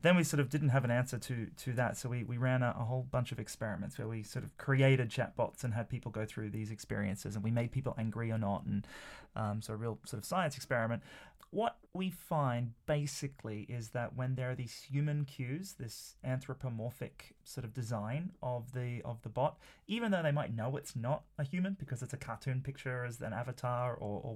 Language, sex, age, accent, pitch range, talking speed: English, male, 30-49, Australian, 115-140 Hz, 225 wpm